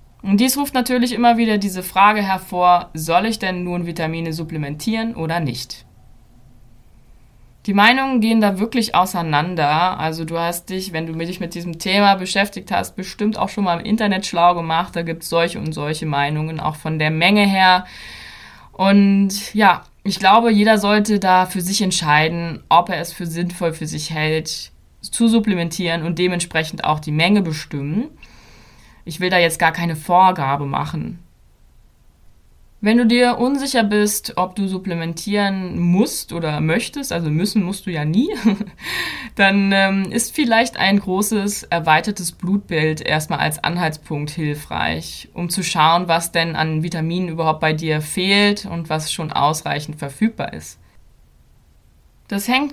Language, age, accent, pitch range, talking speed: German, 20-39, German, 155-205 Hz, 155 wpm